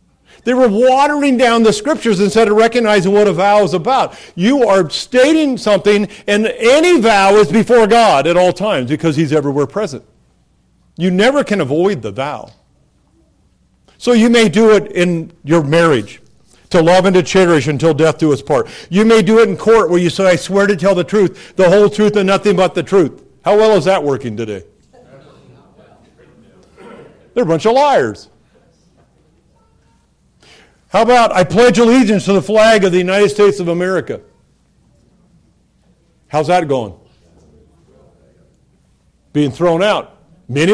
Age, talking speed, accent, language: 50-69, 160 wpm, American, English